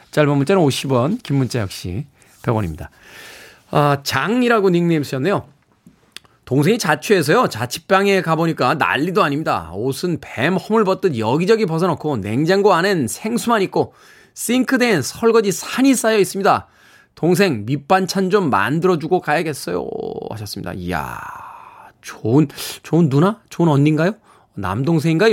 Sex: male